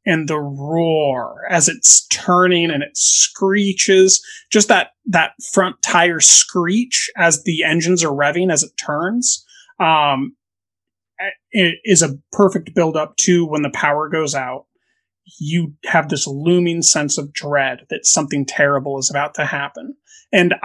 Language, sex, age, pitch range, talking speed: English, male, 30-49, 140-180 Hz, 150 wpm